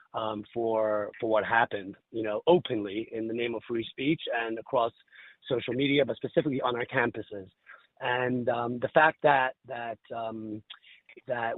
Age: 30-49